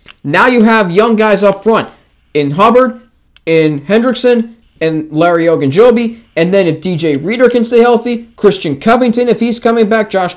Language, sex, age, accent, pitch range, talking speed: English, male, 20-39, American, 195-235 Hz, 170 wpm